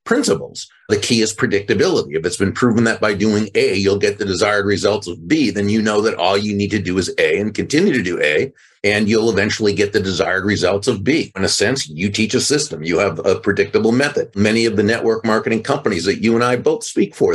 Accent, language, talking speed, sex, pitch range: American, English, 240 wpm, male, 110-155 Hz